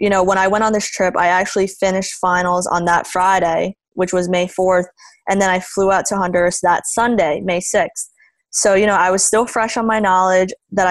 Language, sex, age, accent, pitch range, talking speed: English, female, 20-39, American, 180-205 Hz, 225 wpm